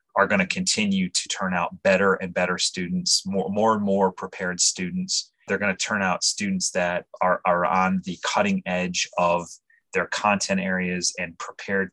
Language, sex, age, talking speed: English, male, 30-49, 180 wpm